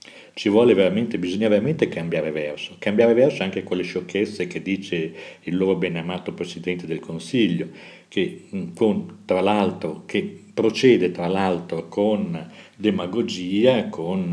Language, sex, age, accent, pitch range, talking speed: Italian, male, 50-69, native, 85-95 Hz, 135 wpm